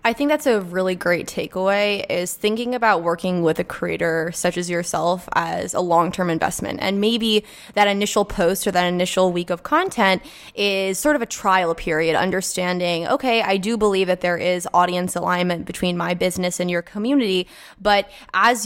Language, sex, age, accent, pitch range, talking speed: English, female, 20-39, American, 185-215 Hz, 180 wpm